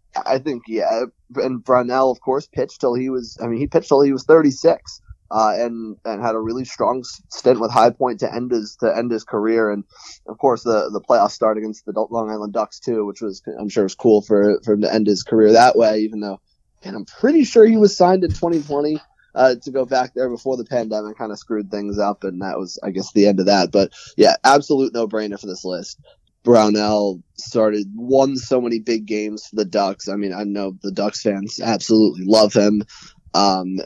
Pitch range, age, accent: 100-120 Hz, 20-39, American